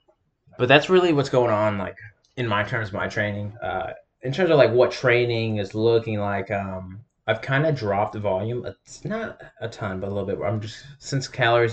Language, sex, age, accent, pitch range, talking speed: English, male, 20-39, American, 100-120 Hz, 210 wpm